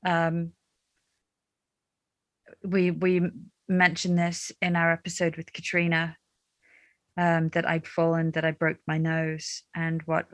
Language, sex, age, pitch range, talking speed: English, female, 30-49, 165-180 Hz, 120 wpm